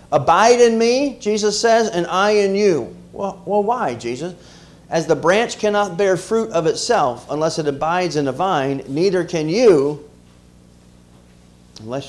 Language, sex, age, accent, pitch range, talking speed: English, male, 40-59, American, 150-230 Hz, 155 wpm